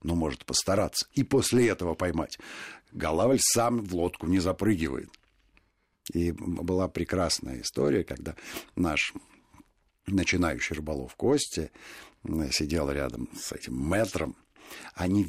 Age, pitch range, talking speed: 60-79, 85-115 Hz, 110 wpm